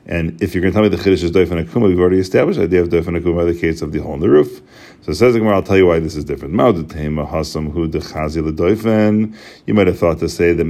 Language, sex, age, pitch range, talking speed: English, male, 40-59, 85-105 Hz, 260 wpm